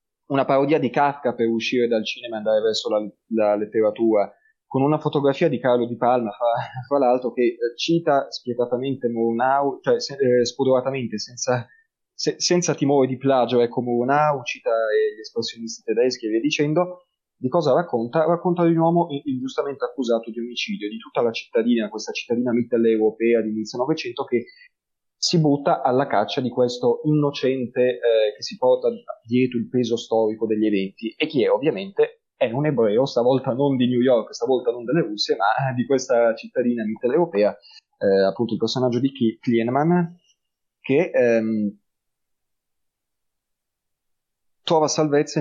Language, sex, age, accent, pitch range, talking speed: Italian, male, 20-39, native, 115-150 Hz, 155 wpm